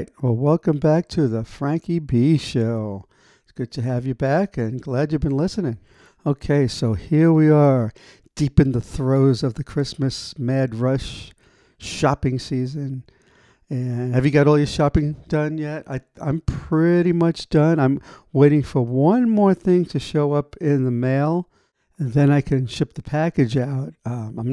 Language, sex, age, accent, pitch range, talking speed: English, male, 60-79, American, 125-150 Hz, 170 wpm